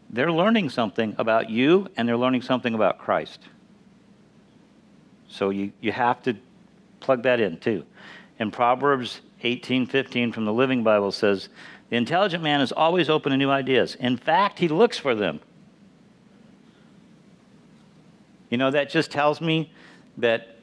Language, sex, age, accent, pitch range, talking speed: English, male, 50-69, American, 120-195 Hz, 150 wpm